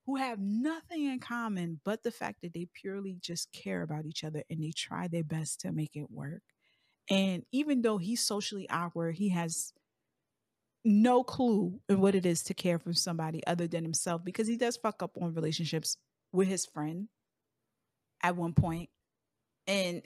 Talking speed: 180 wpm